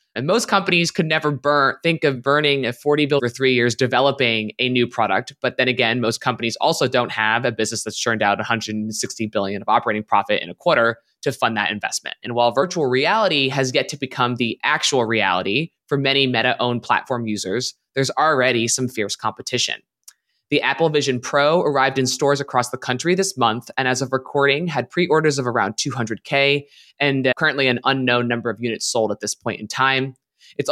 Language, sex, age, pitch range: English, male, 20-39, 115-145 Hz